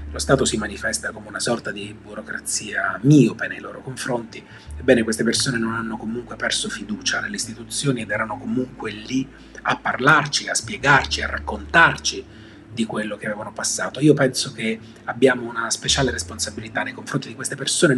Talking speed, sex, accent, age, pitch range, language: 165 wpm, male, native, 30-49, 105-125 Hz, Italian